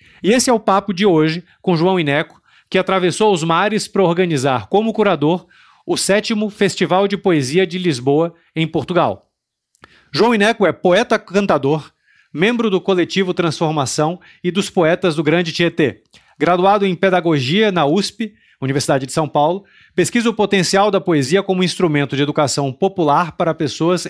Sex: male